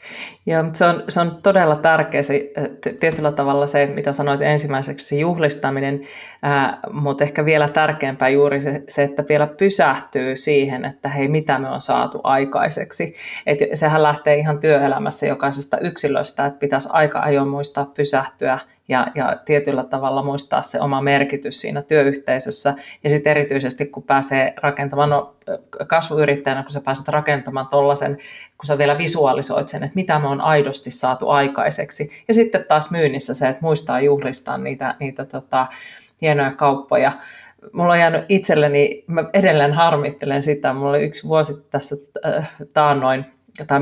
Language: Finnish